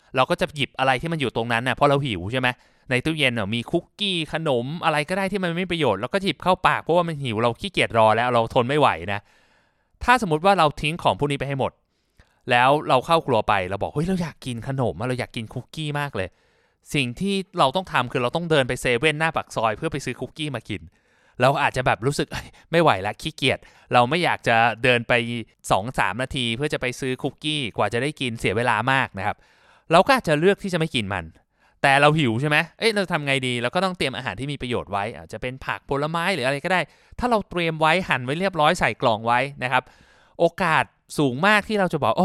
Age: 20-39